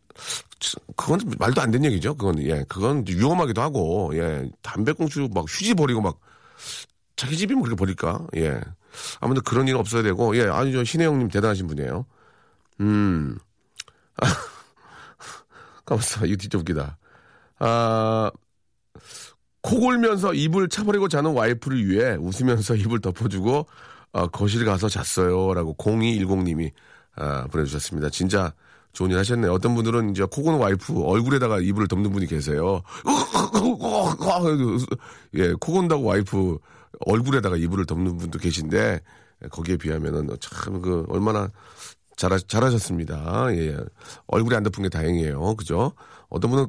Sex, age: male, 40-59